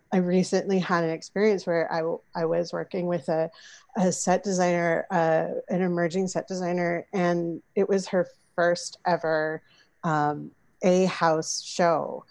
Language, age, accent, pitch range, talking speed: English, 30-49, American, 165-190 Hz, 145 wpm